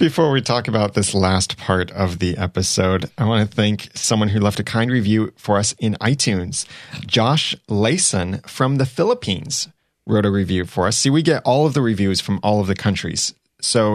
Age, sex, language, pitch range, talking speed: 30-49, male, English, 95-120 Hz, 200 wpm